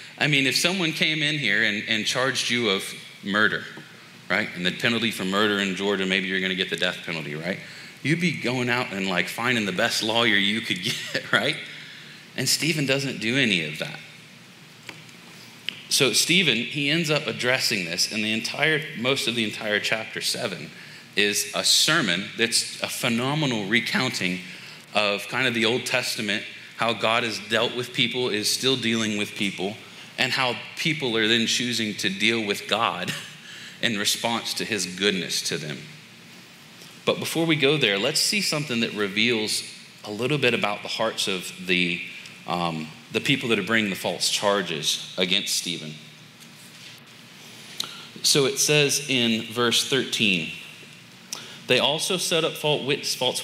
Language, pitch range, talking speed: English, 105-135 Hz, 165 wpm